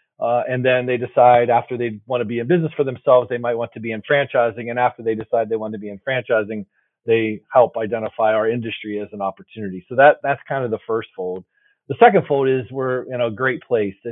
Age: 40-59